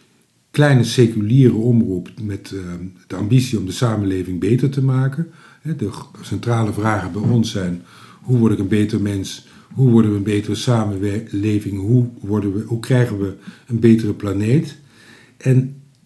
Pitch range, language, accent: 105-145 Hz, Dutch, Dutch